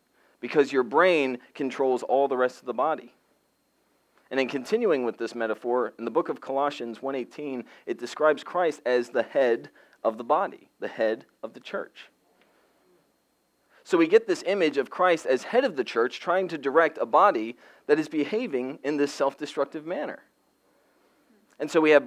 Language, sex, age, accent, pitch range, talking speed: English, male, 40-59, American, 120-150 Hz, 175 wpm